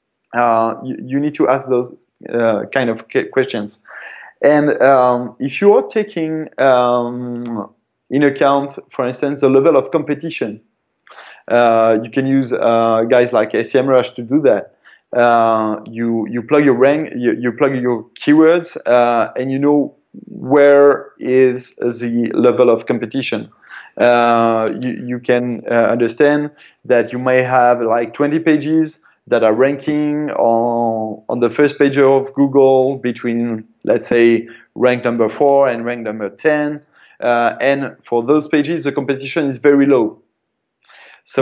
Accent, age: French, 20-39